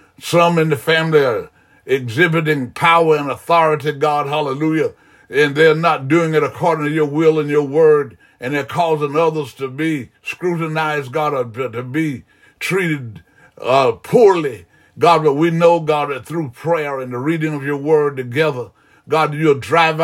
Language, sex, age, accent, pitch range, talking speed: English, male, 60-79, American, 140-160 Hz, 165 wpm